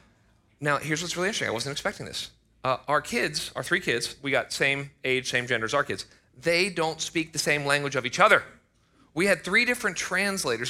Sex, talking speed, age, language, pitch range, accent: male, 215 wpm, 40-59, English, 110-165 Hz, American